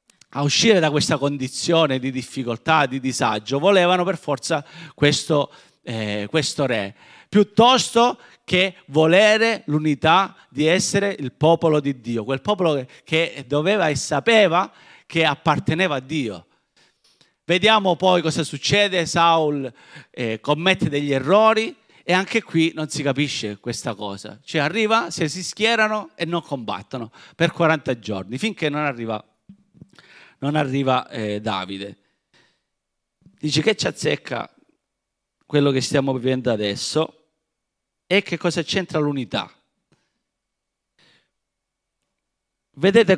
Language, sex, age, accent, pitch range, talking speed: Italian, male, 40-59, native, 130-175 Hz, 120 wpm